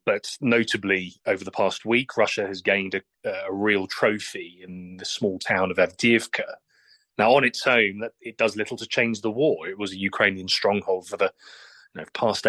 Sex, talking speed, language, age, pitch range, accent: male, 190 wpm, English, 30-49, 95-115 Hz, British